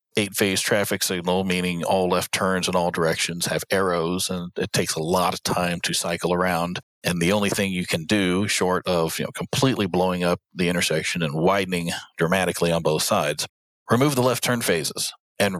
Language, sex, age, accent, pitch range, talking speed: English, male, 40-59, American, 90-105 Hz, 195 wpm